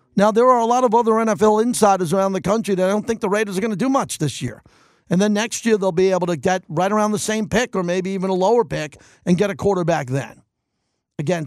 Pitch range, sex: 160-200 Hz, male